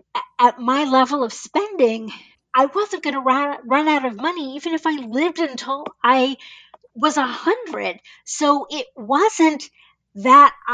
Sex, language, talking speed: female, English, 150 wpm